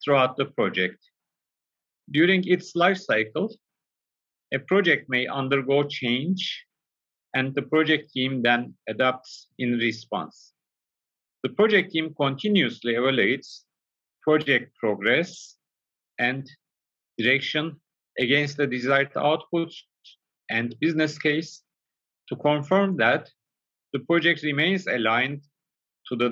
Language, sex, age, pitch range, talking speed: Turkish, male, 50-69, 130-170 Hz, 105 wpm